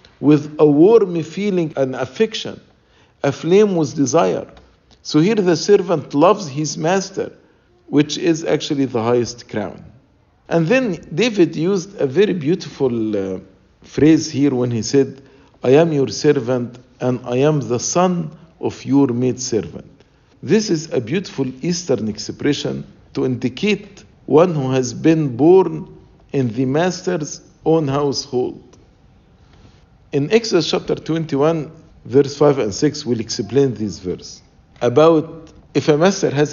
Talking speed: 135 wpm